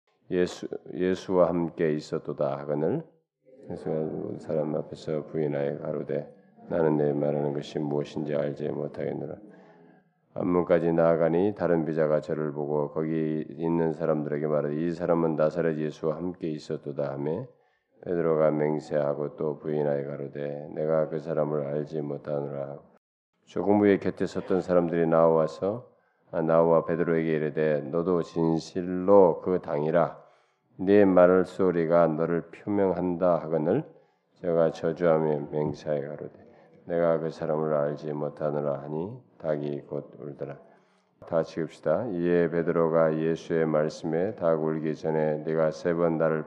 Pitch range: 75-85 Hz